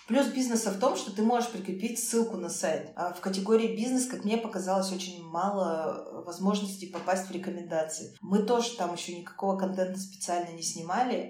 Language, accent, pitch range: Russian, native, 170-200 Hz